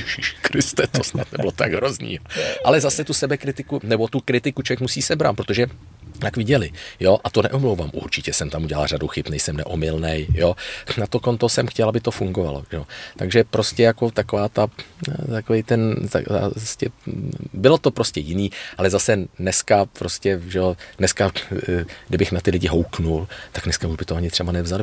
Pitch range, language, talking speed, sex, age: 90-110 Hz, Czech, 175 wpm, male, 40-59